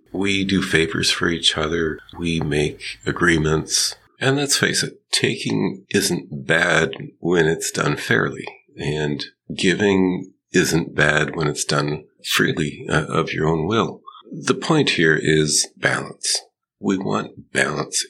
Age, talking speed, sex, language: 50-69, 135 wpm, male, English